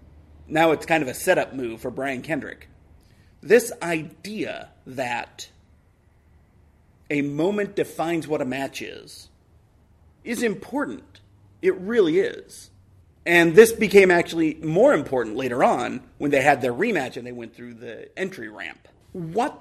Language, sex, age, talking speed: English, male, 30-49, 140 wpm